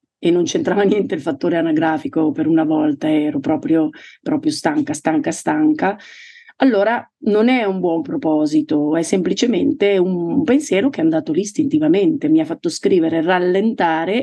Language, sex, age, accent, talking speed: Italian, female, 40-59, native, 155 wpm